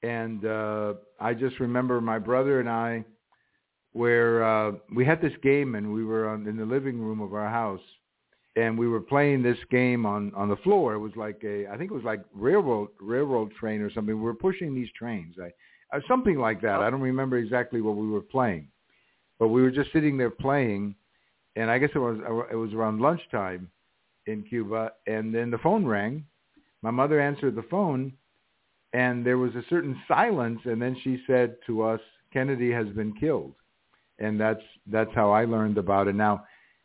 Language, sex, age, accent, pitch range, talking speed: English, male, 60-79, American, 110-135 Hz, 190 wpm